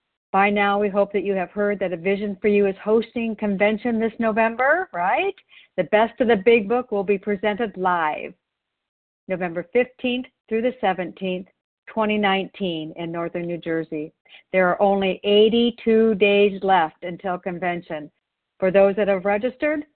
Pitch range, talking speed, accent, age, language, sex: 190-250 Hz, 155 wpm, American, 50-69, English, female